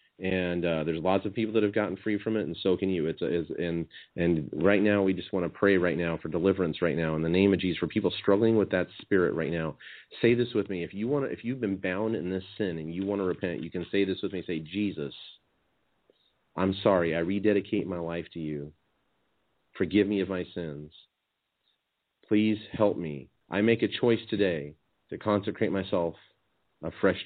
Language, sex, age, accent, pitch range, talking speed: English, male, 40-59, American, 85-100 Hz, 220 wpm